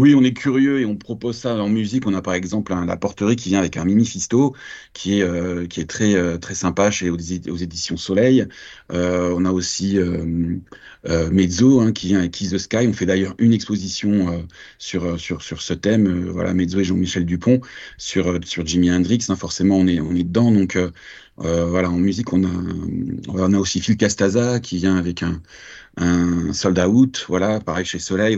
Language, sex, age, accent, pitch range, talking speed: French, male, 30-49, French, 90-110 Hz, 210 wpm